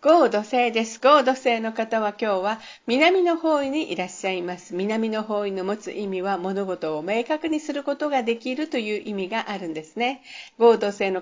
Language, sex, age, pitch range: Japanese, female, 50-69, 195-275 Hz